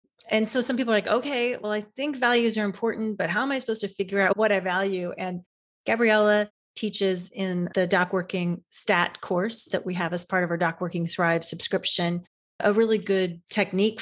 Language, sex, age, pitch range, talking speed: English, female, 30-49, 180-220 Hz, 205 wpm